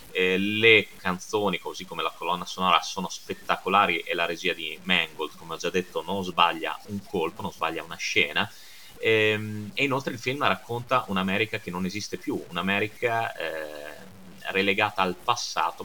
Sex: male